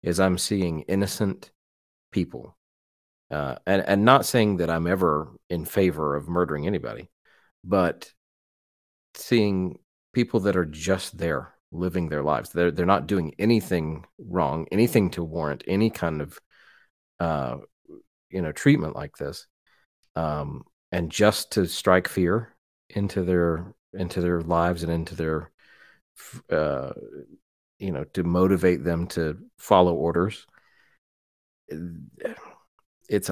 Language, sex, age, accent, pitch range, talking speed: English, male, 40-59, American, 85-105 Hz, 125 wpm